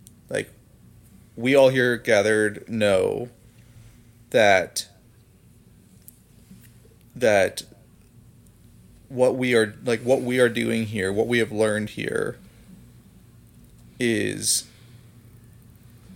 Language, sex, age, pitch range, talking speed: English, male, 30-49, 110-120 Hz, 80 wpm